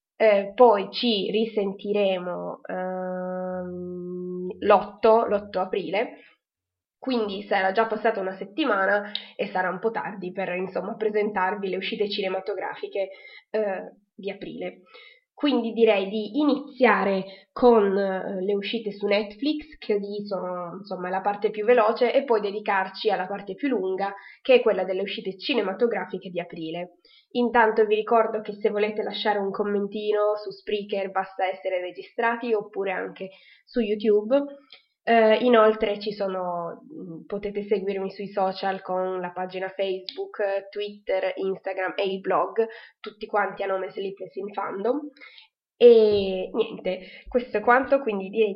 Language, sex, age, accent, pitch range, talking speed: Italian, female, 20-39, native, 190-225 Hz, 130 wpm